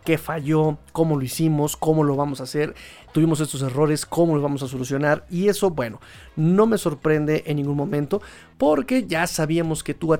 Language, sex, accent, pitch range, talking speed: Spanish, male, Mexican, 145-165 Hz, 190 wpm